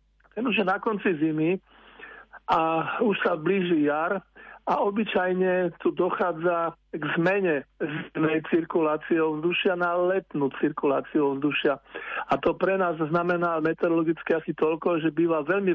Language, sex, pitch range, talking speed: Slovak, male, 155-175 Hz, 120 wpm